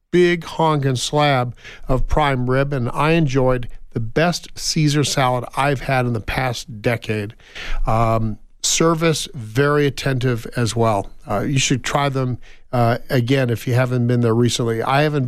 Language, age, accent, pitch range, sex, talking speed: English, 50-69, American, 125-165 Hz, male, 160 wpm